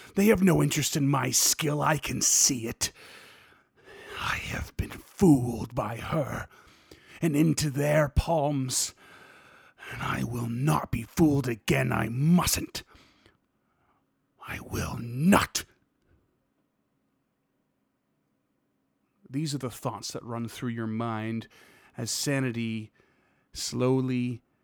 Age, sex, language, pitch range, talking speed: 30-49, male, English, 100-130 Hz, 110 wpm